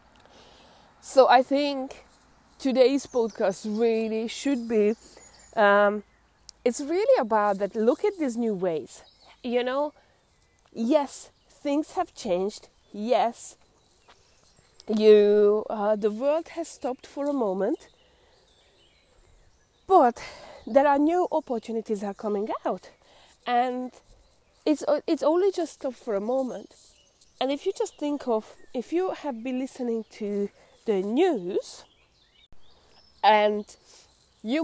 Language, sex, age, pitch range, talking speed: English, female, 20-39, 210-280 Hz, 115 wpm